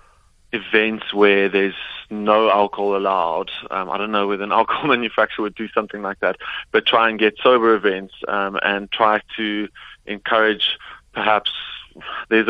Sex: male